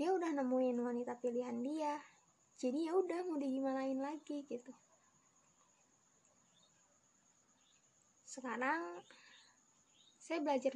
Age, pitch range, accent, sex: 20-39, 245-285 Hz, native, female